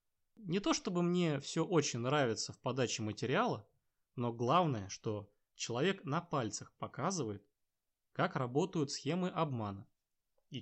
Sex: male